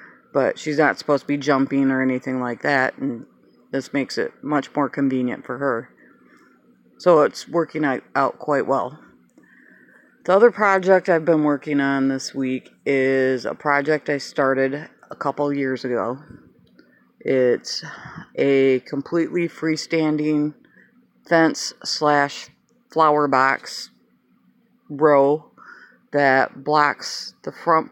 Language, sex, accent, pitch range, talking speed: English, female, American, 135-165 Hz, 120 wpm